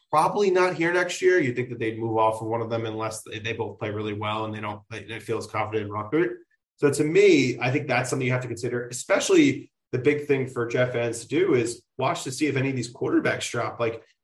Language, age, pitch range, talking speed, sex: English, 30-49, 115-130 Hz, 255 wpm, male